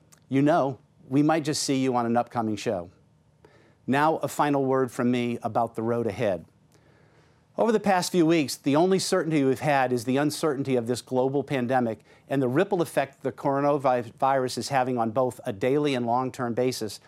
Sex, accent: male, American